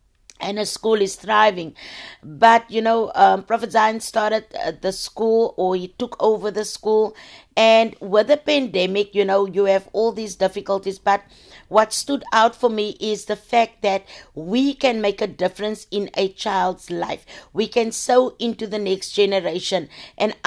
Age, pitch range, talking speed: 60-79, 195-230 Hz, 175 wpm